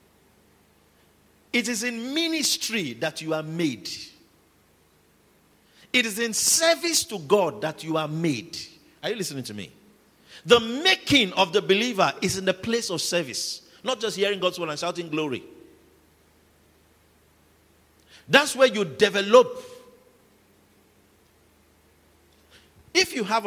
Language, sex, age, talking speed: English, male, 50-69, 125 wpm